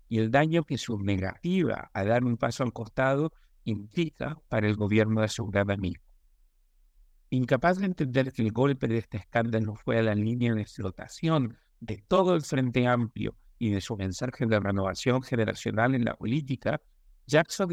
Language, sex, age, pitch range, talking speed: Spanish, male, 60-79, 110-140 Hz, 175 wpm